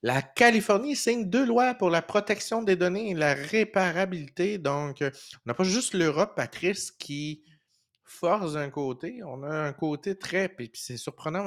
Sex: male